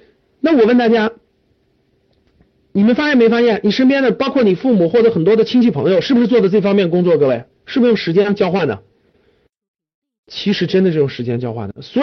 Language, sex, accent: Chinese, male, native